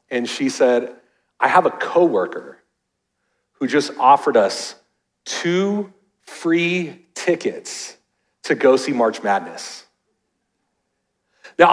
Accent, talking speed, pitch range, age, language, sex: American, 100 wpm, 180-230 Hz, 40-59, English, male